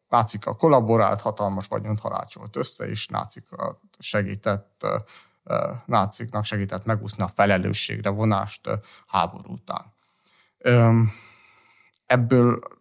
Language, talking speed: Hungarian, 85 wpm